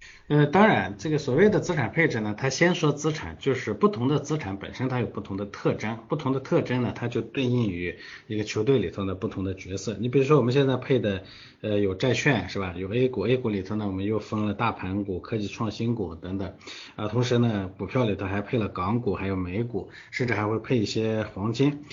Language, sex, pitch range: Chinese, male, 100-135 Hz